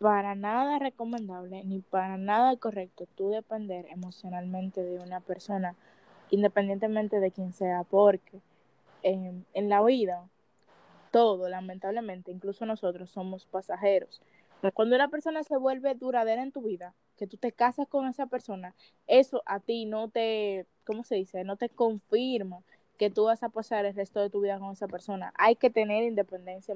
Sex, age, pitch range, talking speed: female, 10-29, 195-255 Hz, 165 wpm